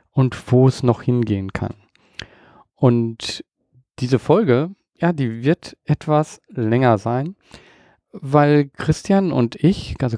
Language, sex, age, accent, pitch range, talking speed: German, male, 40-59, German, 125-160 Hz, 120 wpm